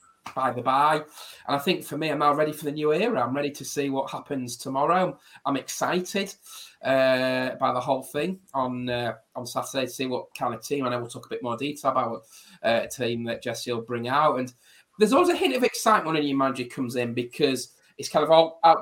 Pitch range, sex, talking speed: 125-155 Hz, male, 240 wpm